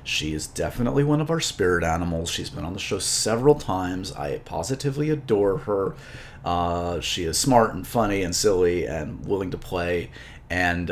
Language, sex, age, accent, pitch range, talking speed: English, male, 30-49, American, 95-135 Hz, 175 wpm